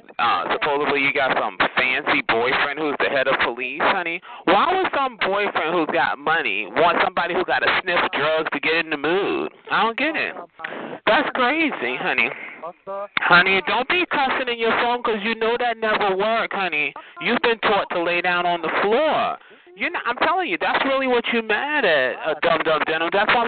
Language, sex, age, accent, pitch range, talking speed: English, male, 30-49, American, 195-320 Hz, 200 wpm